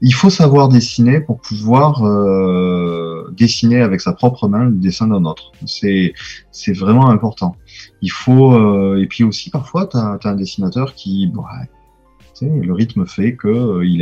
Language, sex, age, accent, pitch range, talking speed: French, male, 30-49, French, 95-130 Hz, 160 wpm